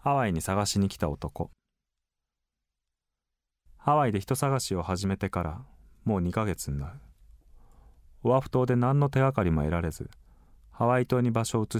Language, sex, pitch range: Japanese, male, 75-120 Hz